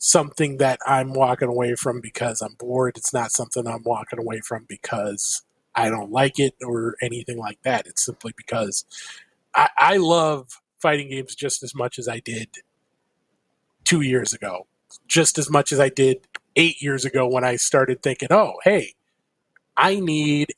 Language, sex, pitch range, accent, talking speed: English, male, 125-155 Hz, American, 170 wpm